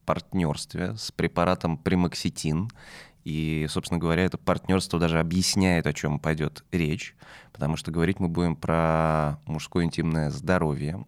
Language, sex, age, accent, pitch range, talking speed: Russian, male, 20-39, native, 80-95 Hz, 130 wpm